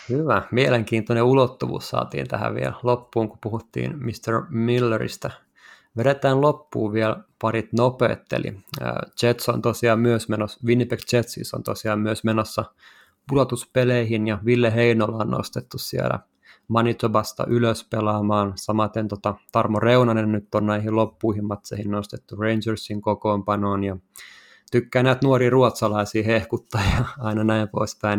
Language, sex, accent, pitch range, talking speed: Finnish, male, native, 105-120 Hz, 125 wpm